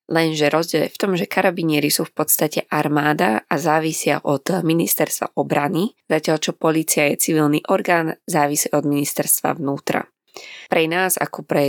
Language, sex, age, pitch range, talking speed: Slovak, female, 20-39, 145-170 Hz, 155 wpm